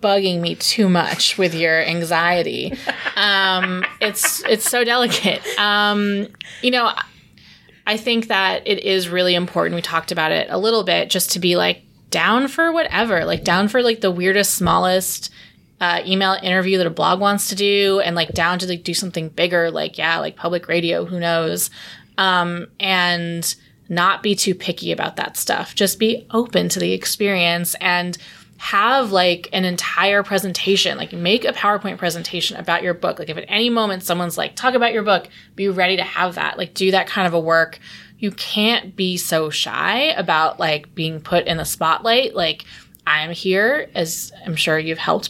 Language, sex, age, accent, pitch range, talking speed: English, female, 20-39, American, 170-200 Hz, 185 wpm